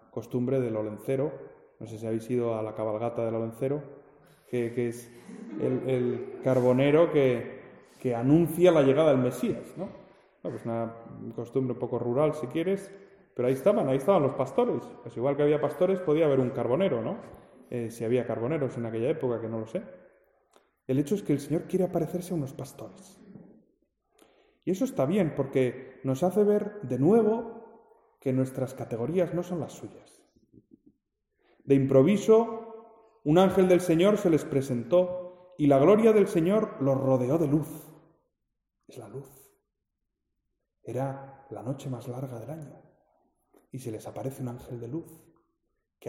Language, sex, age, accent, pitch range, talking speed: Spanish, male, 20-39, Spanish, 125-180 Hz, 170 wpm